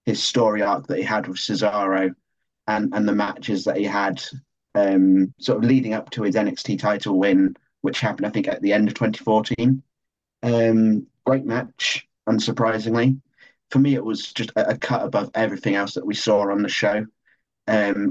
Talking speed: 185 wpm